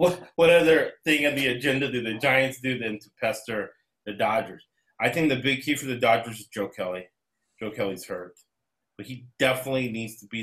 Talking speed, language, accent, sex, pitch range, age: 205 wpm, English, American, male, 105-130 Hz, 30-49